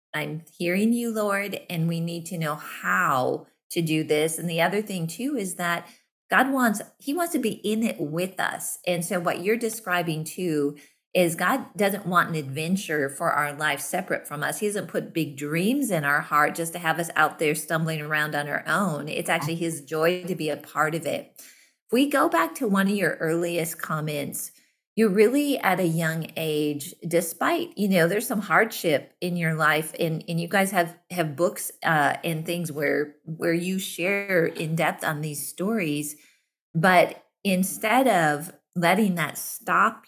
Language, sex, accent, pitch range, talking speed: English, female, American, 155-200 Hz, 190 wpm